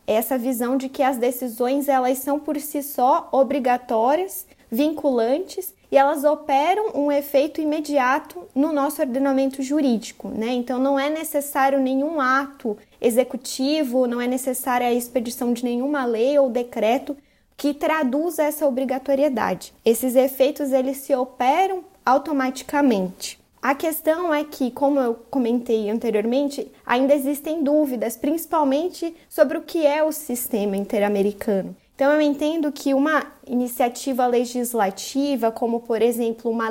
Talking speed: 130 wpm